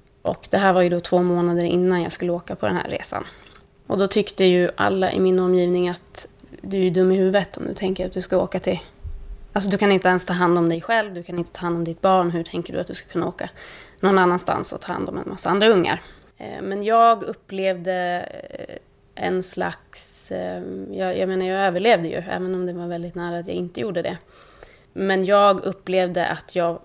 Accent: native